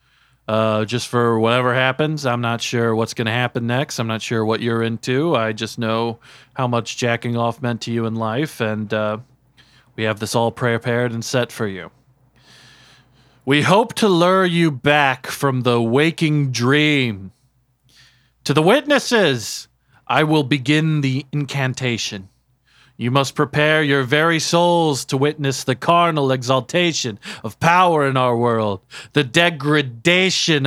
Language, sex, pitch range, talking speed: English, male, 120-175 Hz, 155 wpm